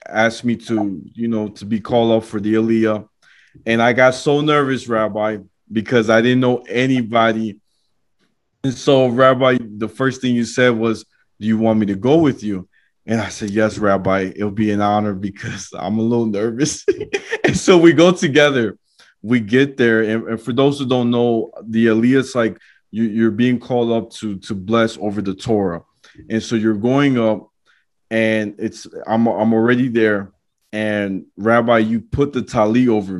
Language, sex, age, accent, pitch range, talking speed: English, male, 20-39, American, 110-125 Hz, 185 wpm